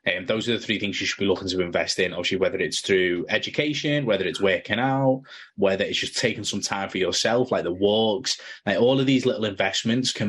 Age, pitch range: 20-39, 100-130 Hz